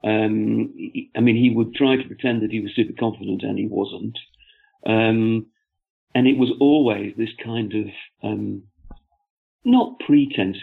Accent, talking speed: British, 150 wpm